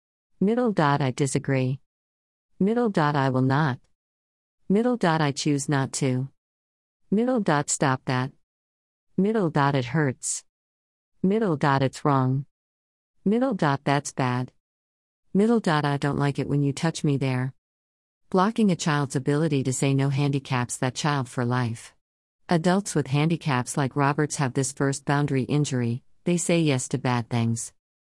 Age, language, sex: 50-69, English, female